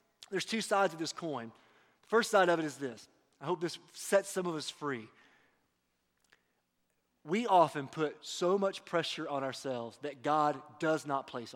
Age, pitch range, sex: 30-49, 145-200 Hz, male